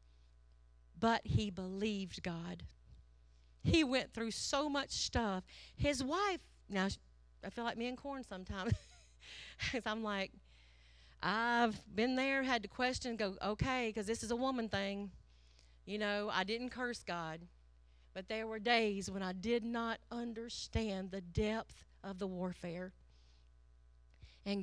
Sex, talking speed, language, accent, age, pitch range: female, 140 wpm, English, American, 40-59, 145-235 Hz